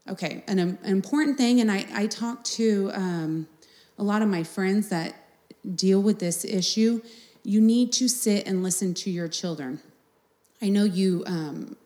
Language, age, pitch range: English, 30-49, 180-225 Hz